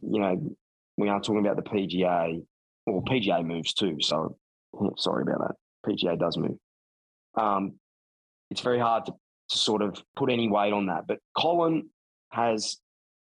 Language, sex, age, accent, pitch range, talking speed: English, male, 20-39, Australian, 85-120 Hz, 155 wpm